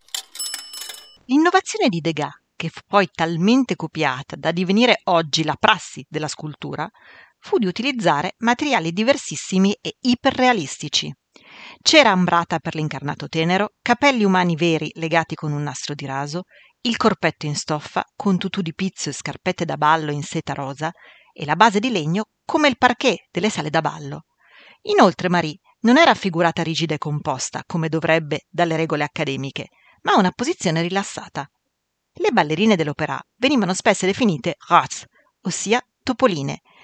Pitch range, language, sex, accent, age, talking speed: 155-225 Hz, Italian, female, native, 40-59, 145 wpm